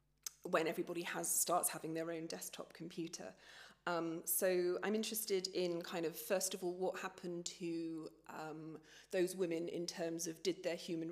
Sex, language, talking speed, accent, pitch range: female, German, 165 wpm, British, 165-185 Hz